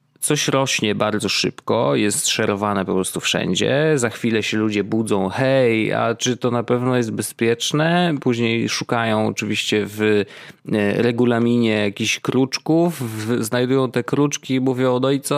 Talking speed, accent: 135 wpm, native